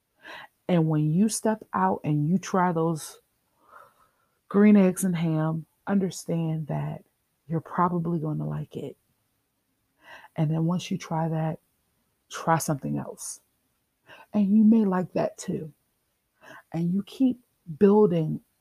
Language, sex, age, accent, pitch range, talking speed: English, female, 40-59, American, 150-190 Hz, 130 wpm